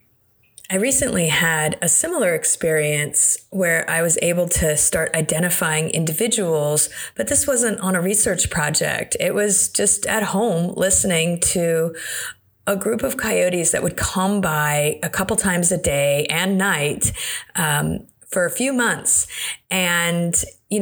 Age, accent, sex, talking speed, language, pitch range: 30-49, American, female, 145 wpm, English, 170-225 Hz